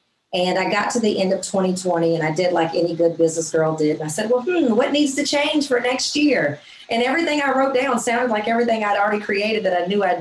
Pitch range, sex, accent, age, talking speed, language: 175-235 Hz, female, American, 40-59, 260 wpm, English